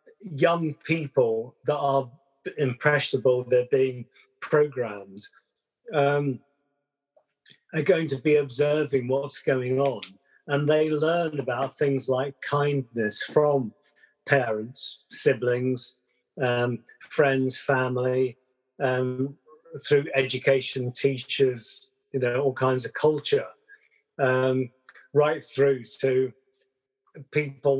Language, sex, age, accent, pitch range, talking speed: English, male, 50-69, British, 125-150 Hz, 95 wpm